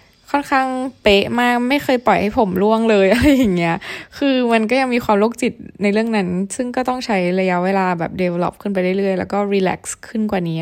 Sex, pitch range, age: female, 180-220 Hz, 20-39